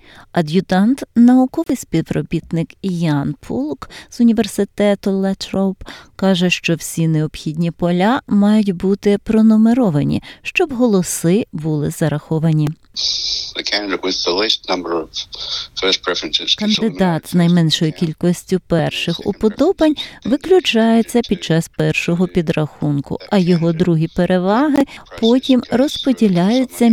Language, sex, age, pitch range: Ukrainian, female, 30-49, 165-225 Hz